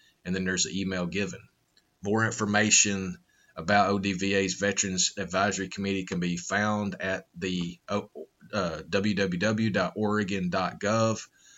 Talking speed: 105 wpm